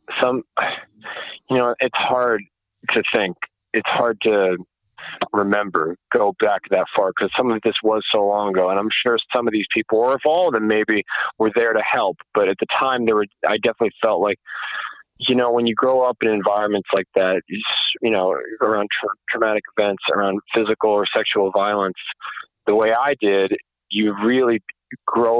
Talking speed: 180 wpm